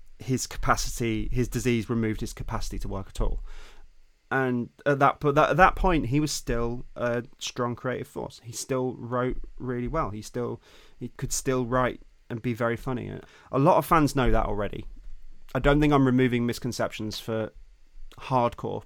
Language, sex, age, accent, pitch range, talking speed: English, male, 20-39, British, 110-130 Hz, 175 wpm